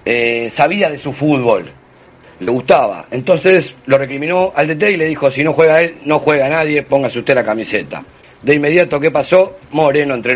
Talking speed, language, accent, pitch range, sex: 185 wpm, Spanish, Argentinian, 130-175 Hz, male